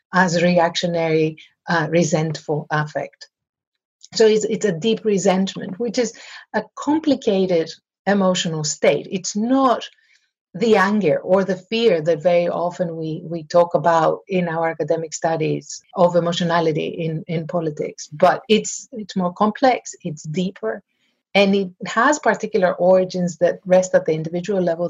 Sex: female